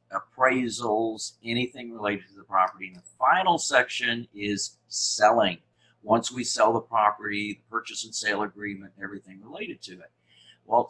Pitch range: 105-120 Hz